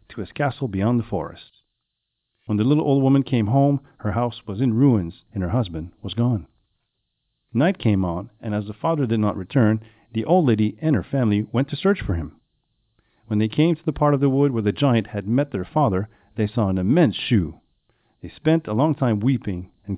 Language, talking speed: French, 215 wpm